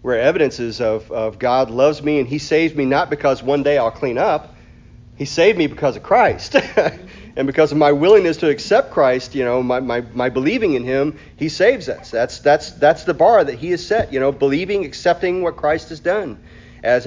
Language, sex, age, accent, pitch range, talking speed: English, male, 40-59, American, 130-160 Hz, 215 wpm